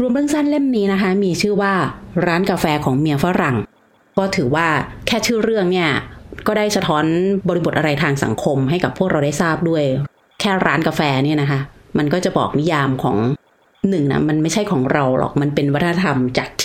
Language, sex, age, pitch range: Thai, female, 30-49, 145-190 Hz